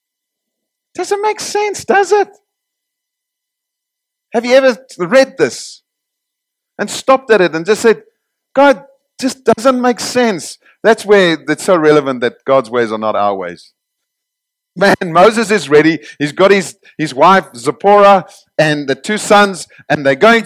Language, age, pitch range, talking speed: English, 50-69, 145-220 Hz, 150 wpm